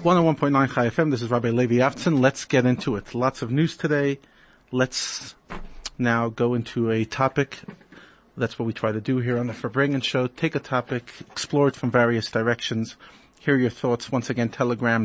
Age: 40-59